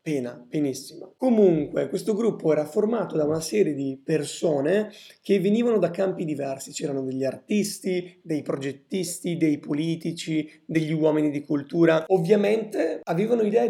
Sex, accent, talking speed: male, native, 135 wpm